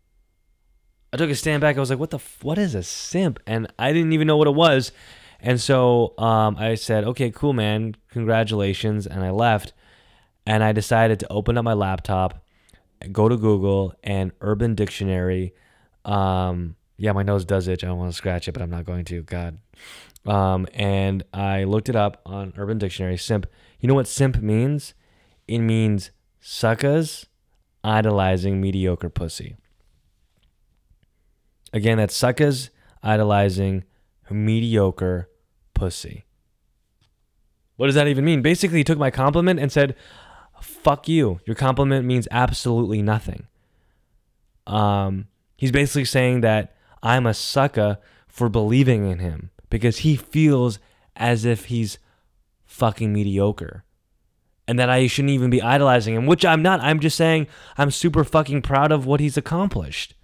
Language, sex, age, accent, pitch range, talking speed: English, male, 10-29, American, 95-130 Hz, 155 wpm